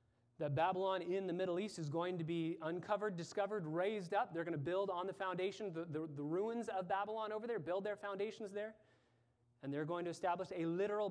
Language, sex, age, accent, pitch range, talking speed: English, male, 30-49, American, 140-185 Hz, 215 wpm